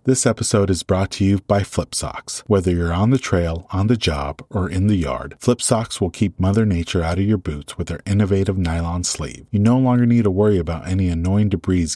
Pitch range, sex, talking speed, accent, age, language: 85-110 Hz, male, 230 wpm, American, 30-49, English